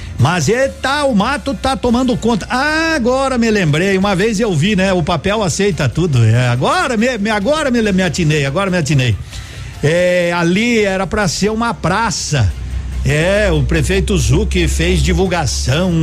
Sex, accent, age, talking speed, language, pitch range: male, Brazilian, 60-79, 165 wpm, Portuguese, 150-220 Hz